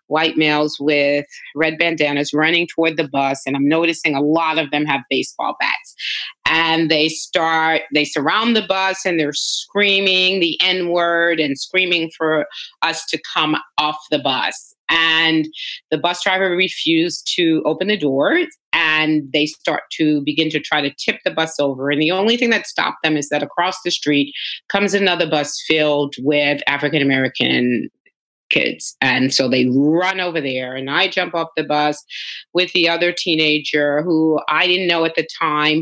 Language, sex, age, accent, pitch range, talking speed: English, female, 30-49, American, 150-185 Hz, 175 wpm